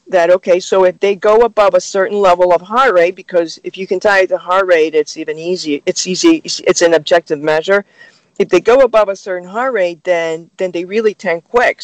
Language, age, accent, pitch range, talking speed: English, 40-59, American, 165-200 Hz, 225 wpm